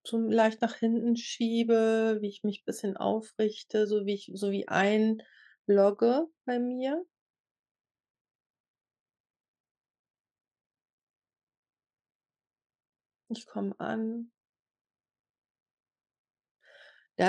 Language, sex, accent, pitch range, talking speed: German, female, German, 180-225 Hz, 85 wpm